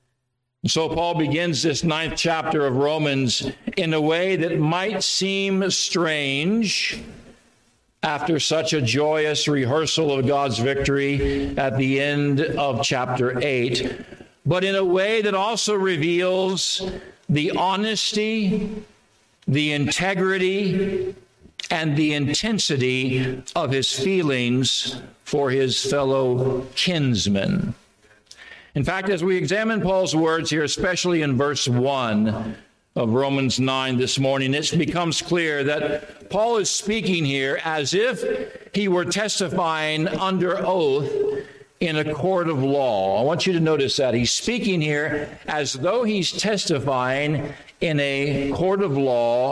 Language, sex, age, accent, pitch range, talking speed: English, male, 50-69, American, 140-190 Hz, 125 wpm